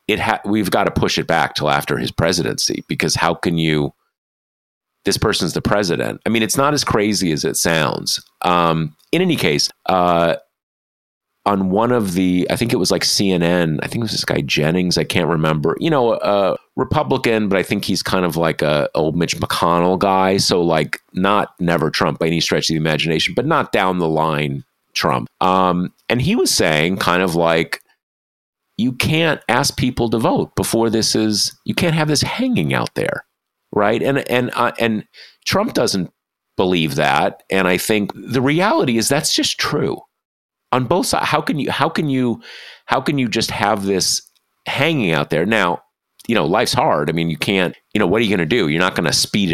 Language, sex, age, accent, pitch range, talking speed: English, male, 40-59, American, 80-115 Hz, 200 wpm